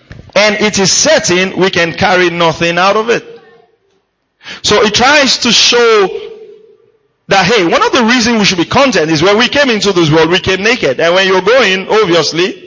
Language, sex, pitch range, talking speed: English, male, 145-200 Hz, 195 wpm